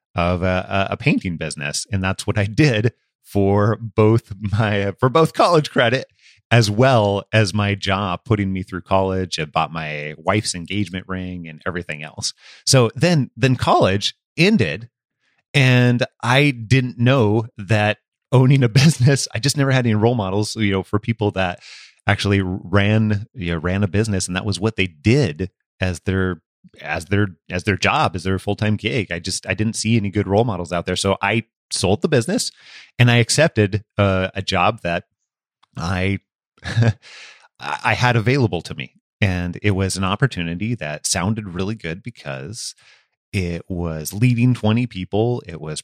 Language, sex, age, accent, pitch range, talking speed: English, male, 30-49, American, 95-115 Hz, 170 wpm